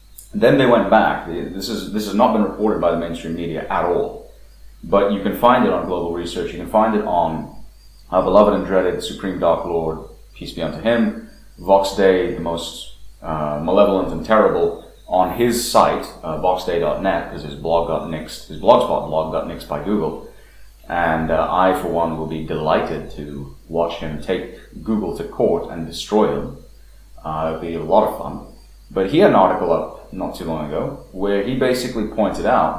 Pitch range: 80-110 Hz